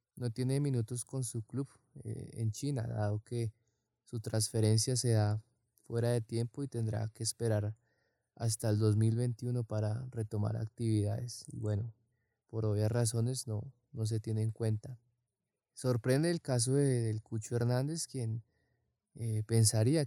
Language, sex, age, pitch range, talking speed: Spanish, male, 20-39, 110-120 Hz, 145 wpm